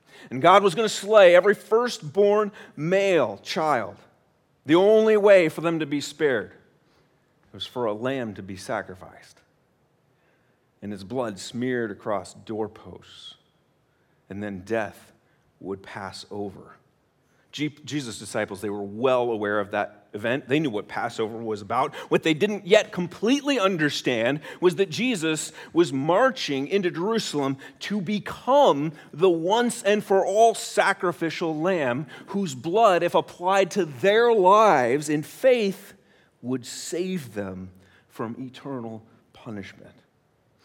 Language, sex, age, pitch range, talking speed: English, male, 40-59, 130-200 Hz, 130 wpm